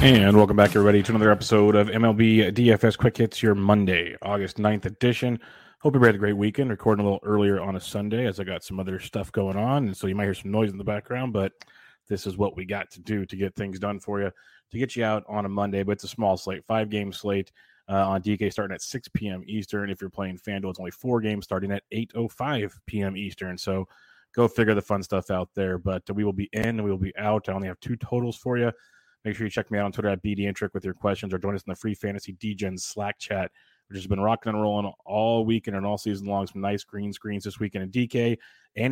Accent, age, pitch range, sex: American, 20-39, 95-110 Hz, male